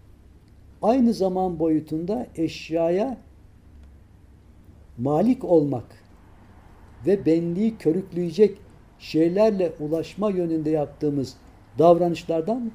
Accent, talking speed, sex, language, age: native, 65 wpm, male, Turkish, 60-79